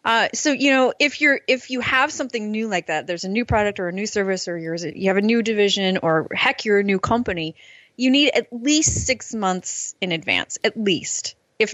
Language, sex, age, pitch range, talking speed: English, female, 30-49, 185-245 Hz, 230 wpm